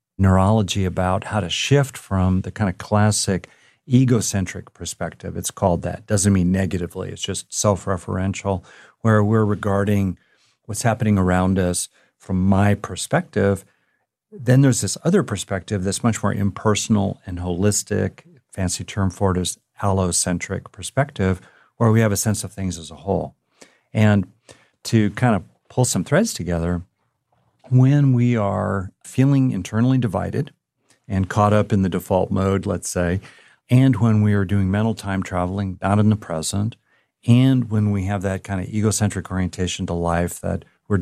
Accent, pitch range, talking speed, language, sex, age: American, 95-110 Hz, 155 wpm, English, male, 50-69